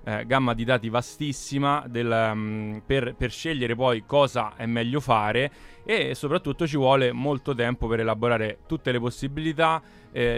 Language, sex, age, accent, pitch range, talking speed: Italian, male, 20-39, native, 110-130 Hz, 150 wpm